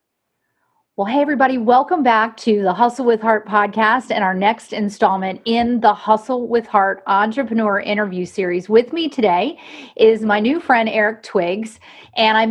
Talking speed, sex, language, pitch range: 165 wpm, female, English, 200-245 Hz